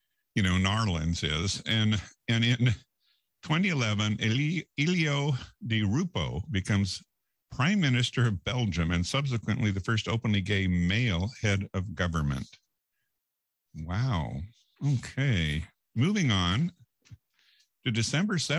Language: English